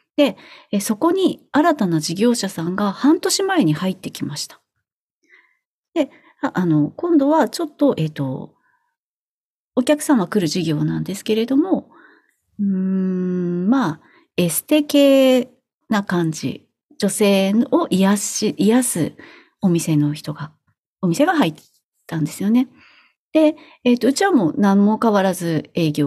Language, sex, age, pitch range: Japanese, female, 40-59, 175-285 Hz